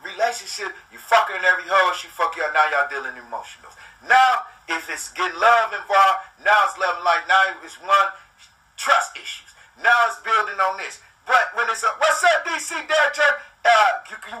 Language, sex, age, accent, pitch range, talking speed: English, male, 30-49, American, 205-280 Hz, 190 wpm